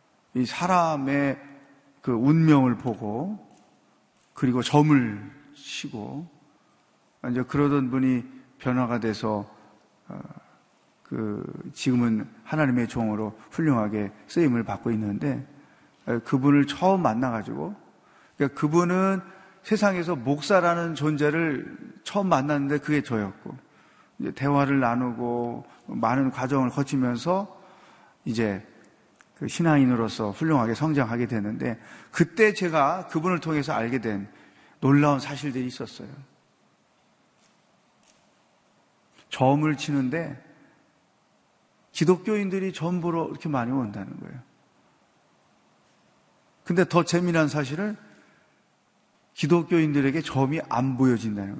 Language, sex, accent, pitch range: Korean, male, native, 120-160 Hz